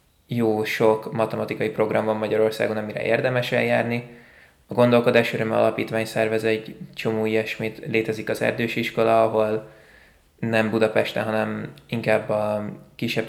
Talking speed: 125 wpm